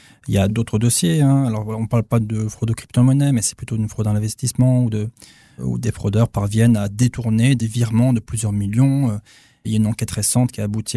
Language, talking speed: French, 240 wpm